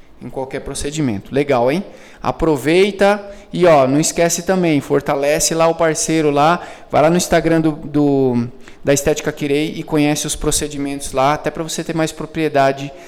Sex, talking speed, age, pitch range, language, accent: male, 165 wpm, 20-39, 140-170 Hz, Portuguese, Brazilian